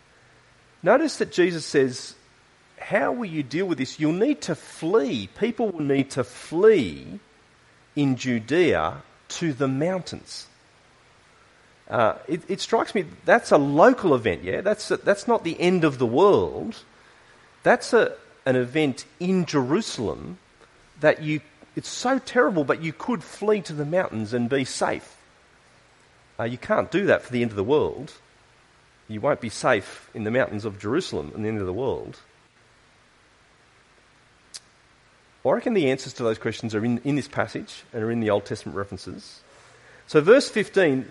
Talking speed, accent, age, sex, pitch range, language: 165 wpm, Australian, 40-59, male, 120-175 Hz, English